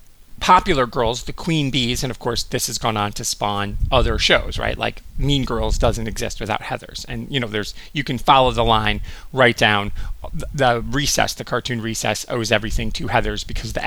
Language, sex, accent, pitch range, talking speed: English, male, American, 110-135 Hz, 205 wpm